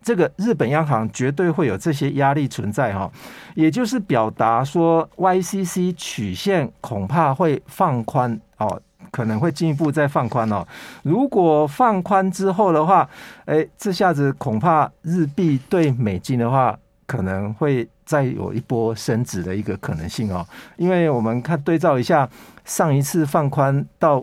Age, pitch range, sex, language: 50-69, 115-170 Hz, male, Chinese